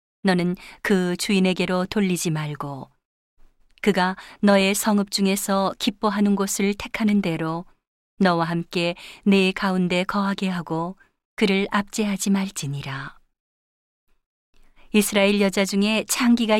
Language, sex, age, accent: Korean, female, 40-59, native